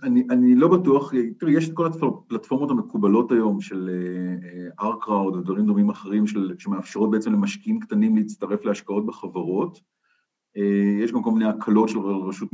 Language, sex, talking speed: Hebrew, male, 150 wpm